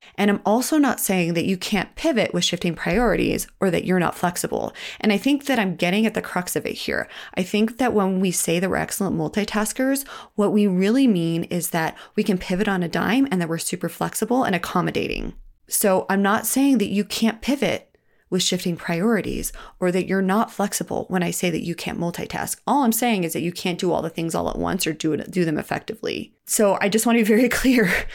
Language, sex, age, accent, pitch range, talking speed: English, female, 30-49, American, 175-220 Hz, 230 wpm